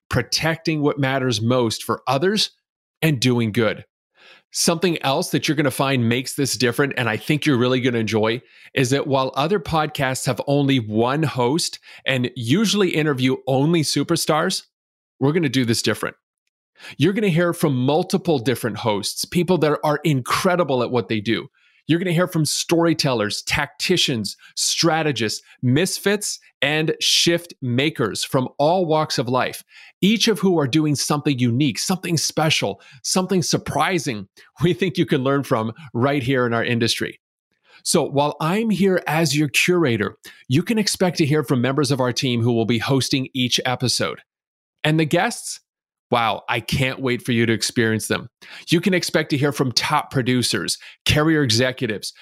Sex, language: male, English